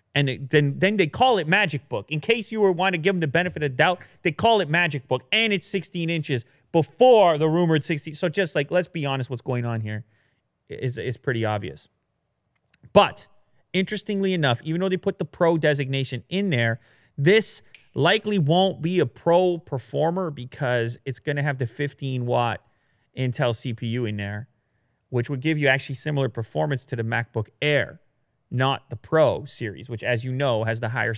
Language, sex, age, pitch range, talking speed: English, male, 30-49, 115-160 Hz, 195 wpm